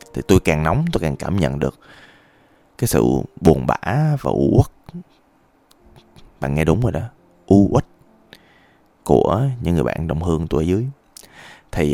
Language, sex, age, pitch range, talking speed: Vietnamese, male, 20-39, 80-115 Hz, 160 wpm